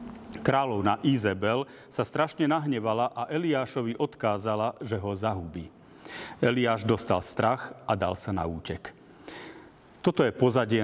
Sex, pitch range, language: male, 100-130 Hz, Slovak